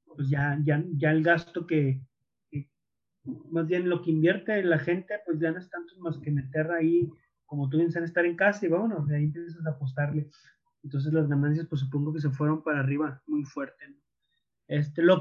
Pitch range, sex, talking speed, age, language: 145-170 Hz, male, 200 wpm, 30-49, Spanish